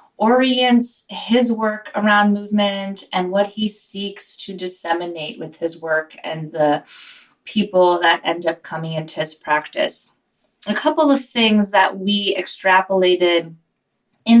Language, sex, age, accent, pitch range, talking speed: English, female, 20-39, American, 170-205 Hz, 135 wpm